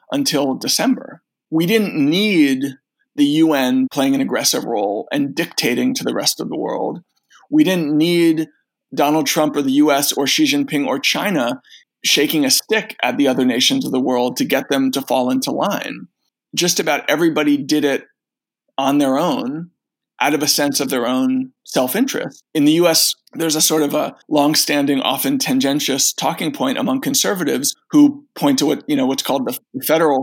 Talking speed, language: 180 wpm, English